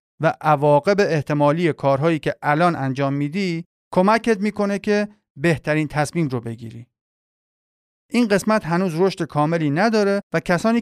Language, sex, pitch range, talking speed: Persian, male, 145-200 Hz, 130 wpm